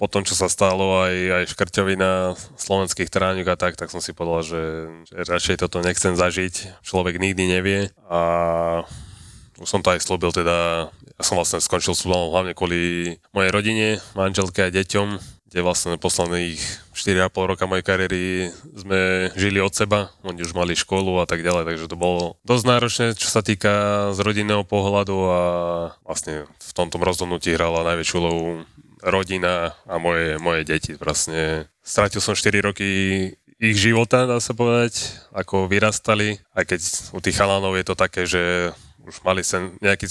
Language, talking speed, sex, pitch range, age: Slovak, 165 wpm, male, 85-100 Hz, 20-39